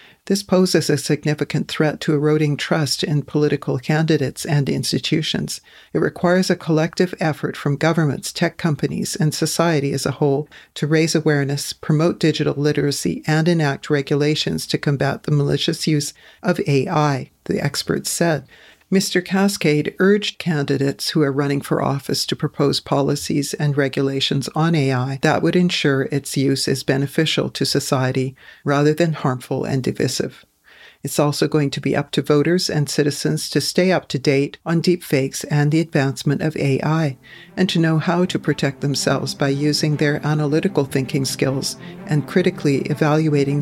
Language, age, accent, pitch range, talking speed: English, 50-69, American, 140-165 Hz, 155 wpm